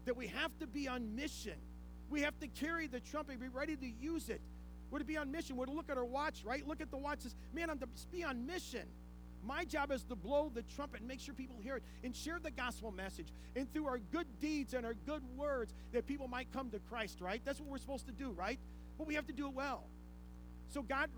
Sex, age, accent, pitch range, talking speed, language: male, 40-59, American, 180-265 Hz, 255 wpm, English